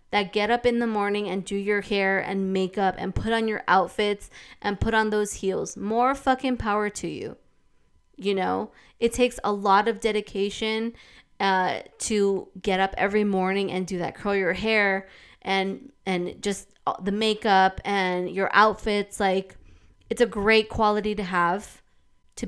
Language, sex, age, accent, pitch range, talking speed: English, female, 20-39, American, 195-245 Hz, 170 wpm